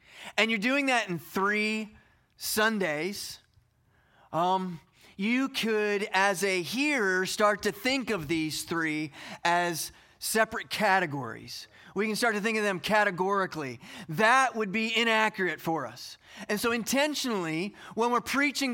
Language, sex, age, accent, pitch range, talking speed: English, male, 30-49, American, 160-215 Hz, 135 wpm